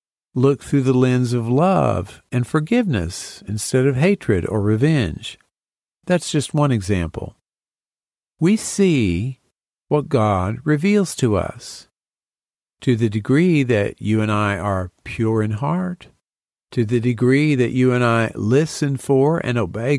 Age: 50-69